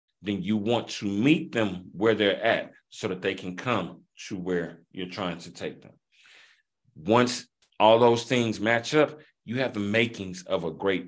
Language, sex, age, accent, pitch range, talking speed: English, male, 30-49, American, 105-140 Hz, 185 wpm